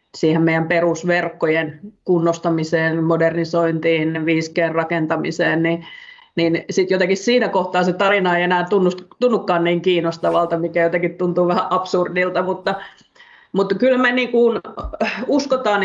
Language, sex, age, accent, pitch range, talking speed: Finnish, female, 30-49, native, 165-185 Hz, 115 wpm